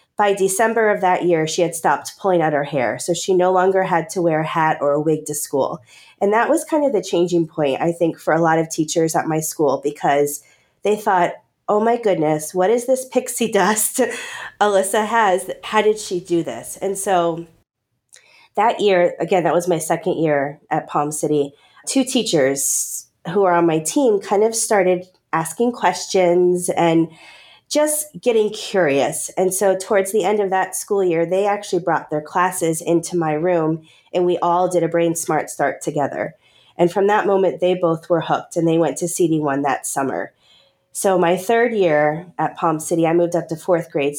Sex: female